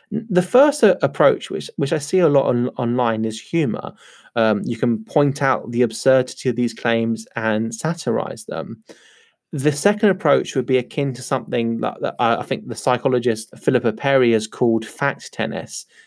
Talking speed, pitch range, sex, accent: 170 wpm, 120-165 Hz, male, British